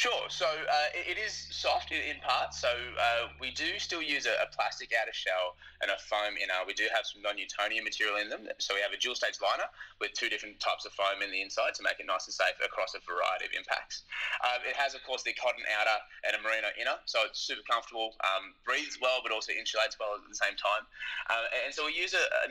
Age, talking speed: 20-39, 240 wpm